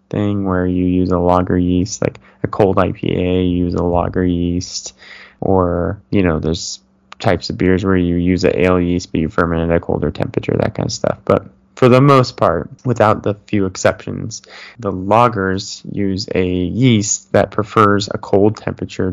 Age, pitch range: 20-39, 95-110 Hz